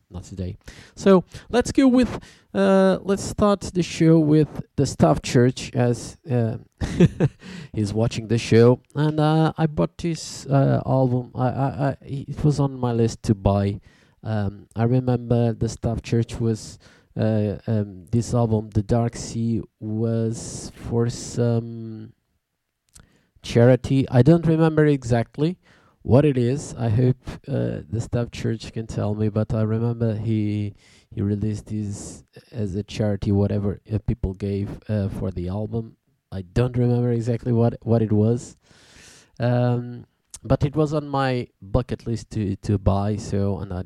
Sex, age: male, 20-39